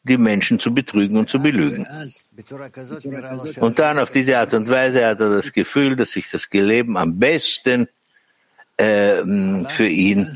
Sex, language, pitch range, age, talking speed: male, German, 110-140 Hz, 60-79, 155 wpm